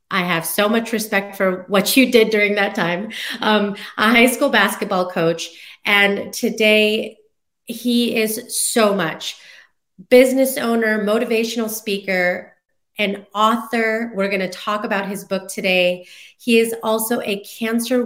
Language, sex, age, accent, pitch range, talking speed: English, female, 30-49, American, 195-230 Hz, 145 wpm